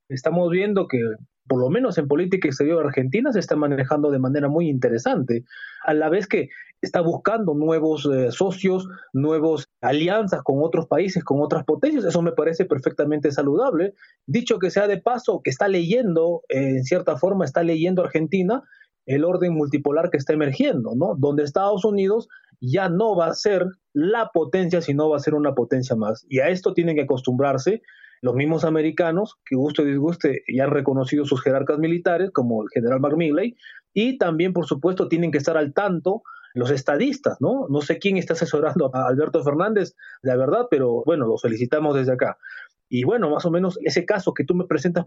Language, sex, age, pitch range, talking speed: Spanish, male, 30-49, 145-190 Hz, 190 wpm